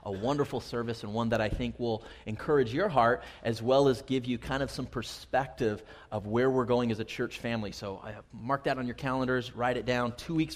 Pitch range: 115-145 Hz